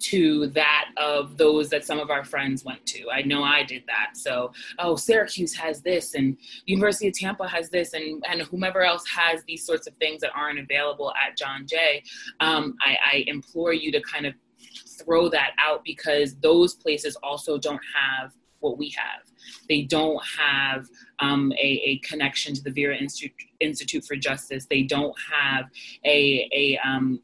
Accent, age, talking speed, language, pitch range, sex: American, 20-39, 180 wpm, English, 140-165 Hz, female